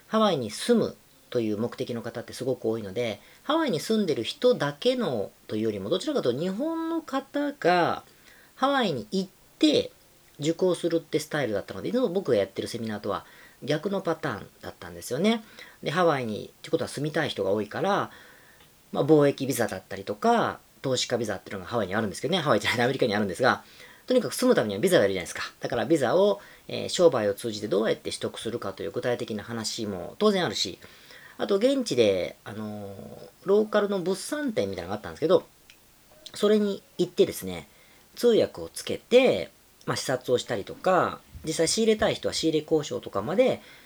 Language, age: Japanese, 40-59